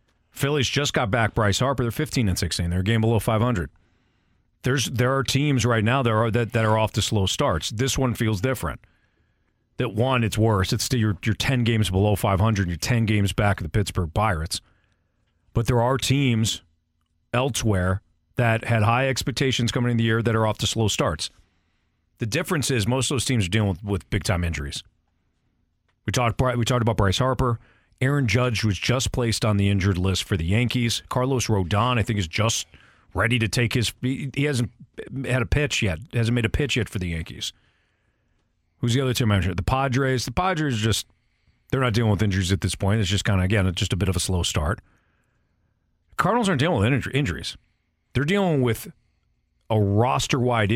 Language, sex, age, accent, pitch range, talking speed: English, male, 40-59, American, 95-125 Hz, 205 wpm